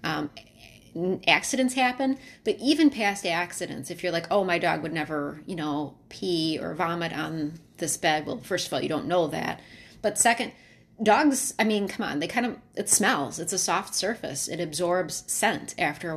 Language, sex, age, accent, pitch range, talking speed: English, female, 30-49, American, 165-210 Hz, 195 wpm